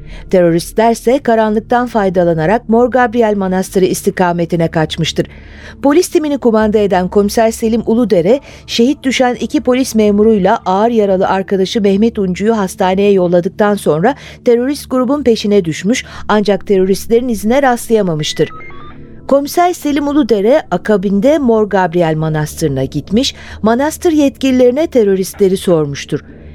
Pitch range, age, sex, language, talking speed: 190-245 Hz, 50-69, female, Turkish, 110 wpm